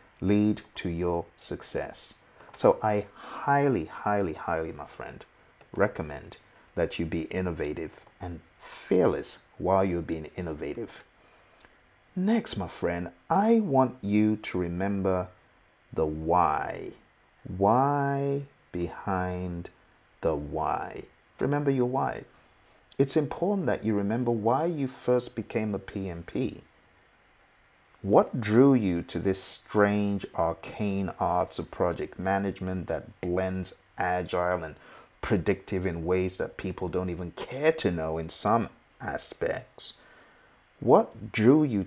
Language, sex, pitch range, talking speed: English, male, 90-125 Hz, 115 wpm